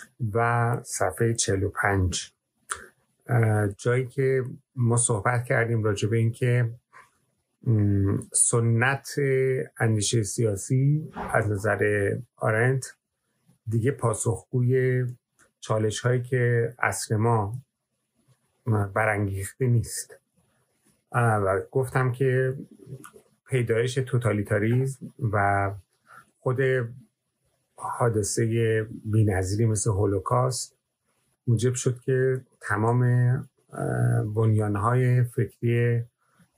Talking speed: 75 wpm